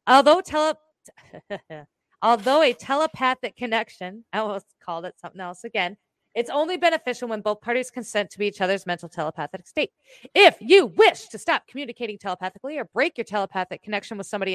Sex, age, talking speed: female, 30-49, 165 wpm